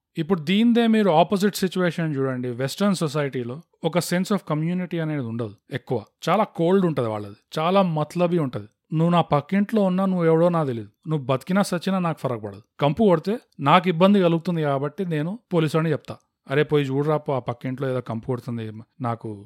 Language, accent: Telugu, native